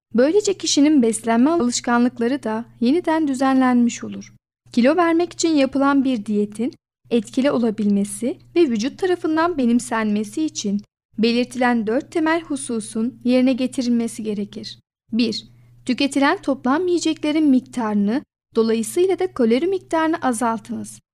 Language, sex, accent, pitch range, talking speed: Turkish, female, native, 225-285 Hz, 105 wpm